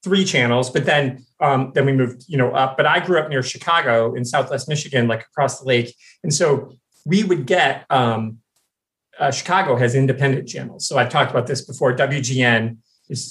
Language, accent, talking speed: English, American, 195 wpm